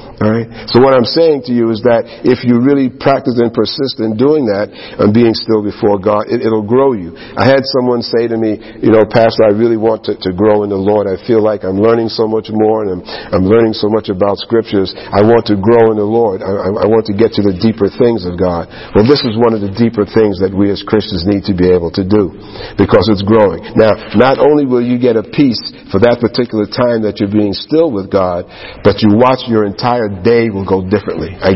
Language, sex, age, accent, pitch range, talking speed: English, male, 50-69, American, 105-120 Hz, 250 wpm